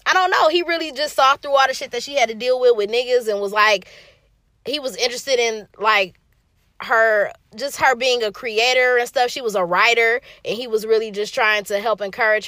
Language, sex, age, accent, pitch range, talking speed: English, female, 20-39, American, 200-255 Hz, 230 wpm